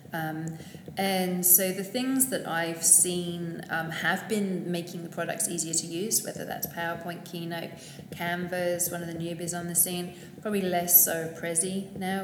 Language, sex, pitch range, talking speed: English, female, 165-185 Hz, 165 wpm